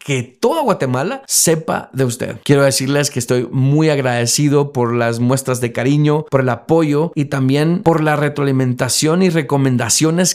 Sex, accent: male, Mexican